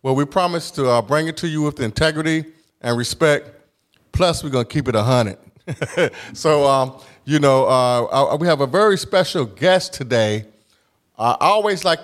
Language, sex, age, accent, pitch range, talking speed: English, male, 30-49, American, 115-155 Hz, 175 wpm